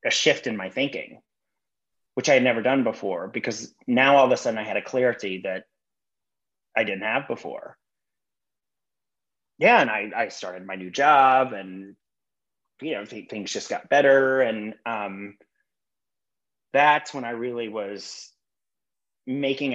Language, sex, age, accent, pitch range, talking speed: English, male, 30-49, American, 100-130 Hz, 150 wpm